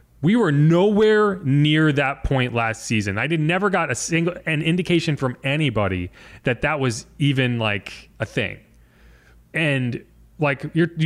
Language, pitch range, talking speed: English, 115-170 Hz, 150 wpm